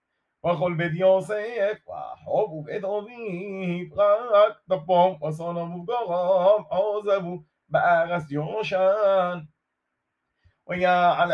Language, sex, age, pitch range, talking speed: Hebrew, male, 30-49, 175-210 Hz, 80 wpm